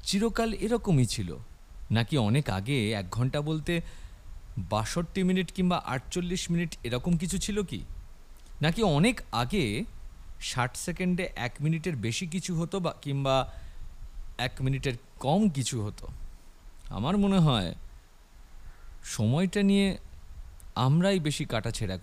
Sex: male